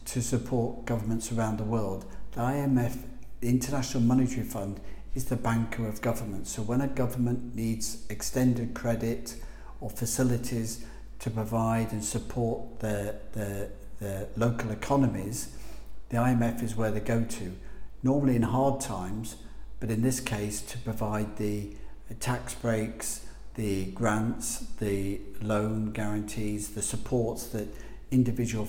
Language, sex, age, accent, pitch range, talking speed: English, male, 50-69, British, 105-120 Hz, 135 wpm